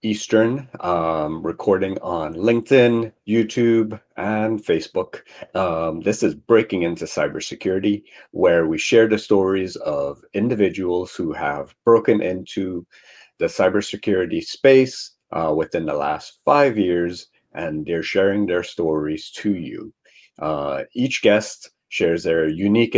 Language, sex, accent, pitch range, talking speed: English, male, American, 85-120 Hz, 125 wpm